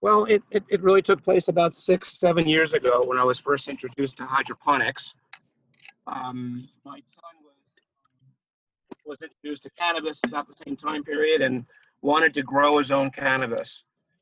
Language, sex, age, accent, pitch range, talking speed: English, male, 50-69, American, 135-160 Hz, 165 wpm